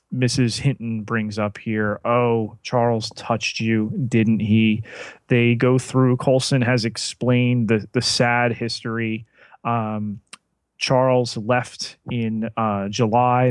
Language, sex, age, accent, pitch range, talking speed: English, male, 30-49, American, 110-125 Hz, 120 wpm